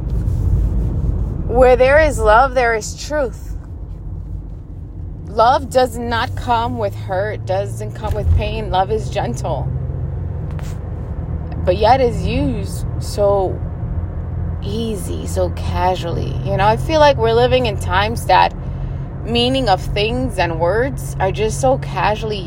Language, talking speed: English, 125 wpm